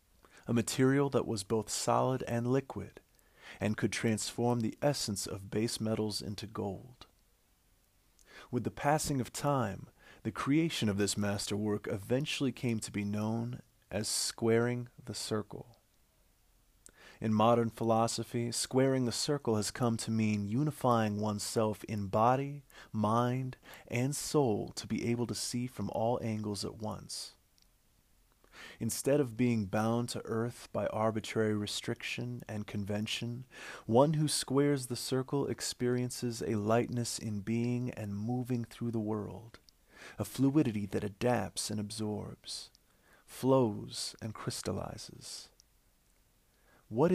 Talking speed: 125 wpm